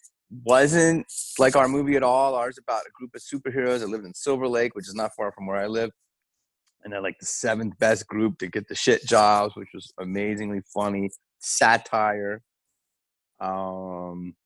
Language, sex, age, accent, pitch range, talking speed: English, male, 30-49, American, 100-125 Hz, 185 wpm